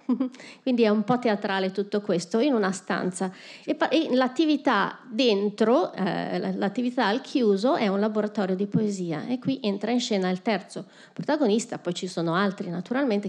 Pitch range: 200-245 Hz